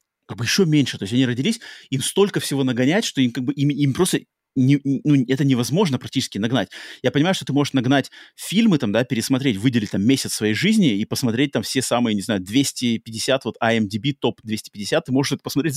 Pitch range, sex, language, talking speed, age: 115-145 Hz, male, Russian, 215 wpm, 30-49